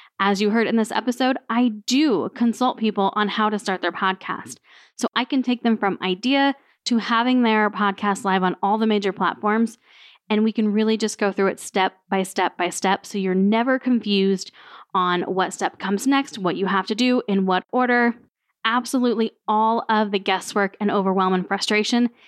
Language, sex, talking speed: English, female, 195 wpm